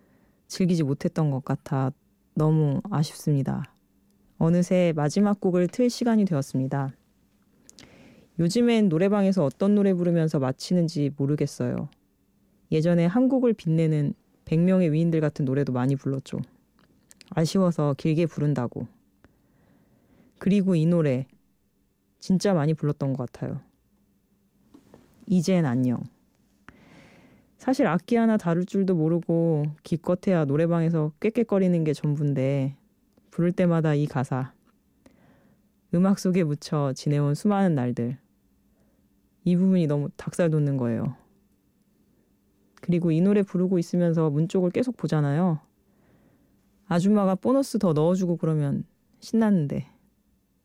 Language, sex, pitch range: Korean, female, 145-190 Hz